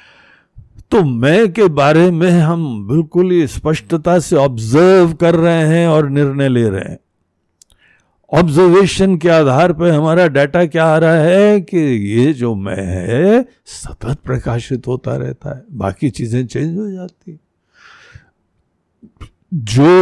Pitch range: 125-185 Hz